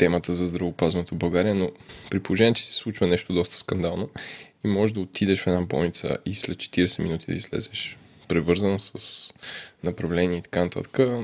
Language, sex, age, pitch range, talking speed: Bulgarian, male, 20-39, 90-115 Hz, 170 wpm